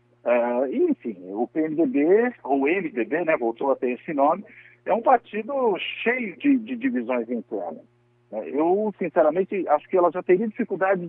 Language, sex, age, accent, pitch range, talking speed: Portuguese, male, 50-69, Brazilian, 135-215 Hz, 155 wpm